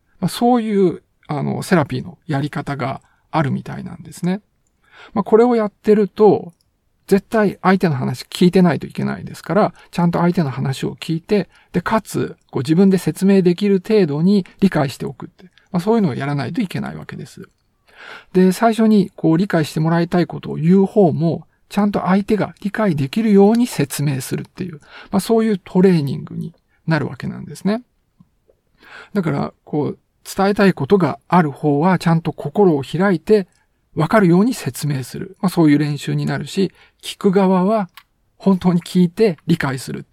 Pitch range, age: 150-195 Hz, 50-69